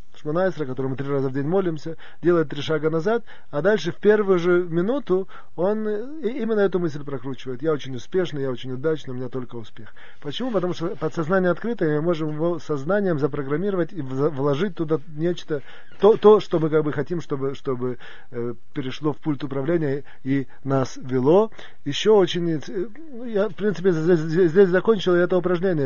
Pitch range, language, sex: 140-180 Hz, Russian, male